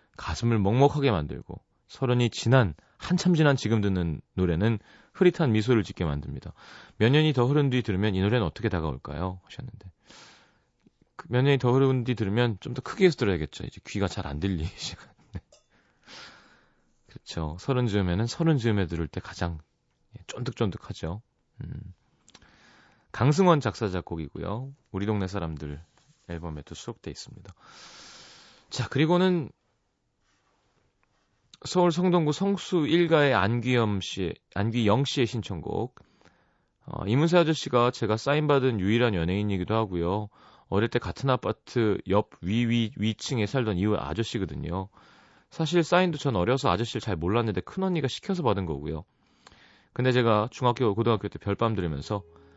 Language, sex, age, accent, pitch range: Korean, male, 30-49, native, 90-125 Hz